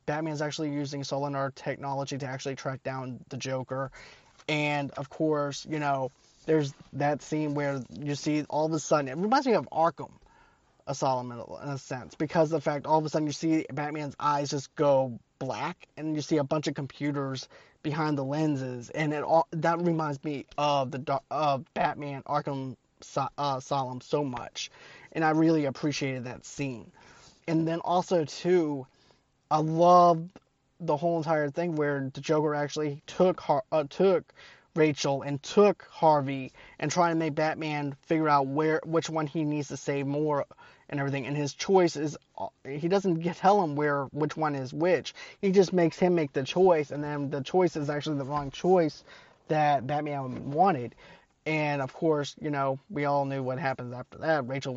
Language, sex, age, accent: English, male, 20-39, American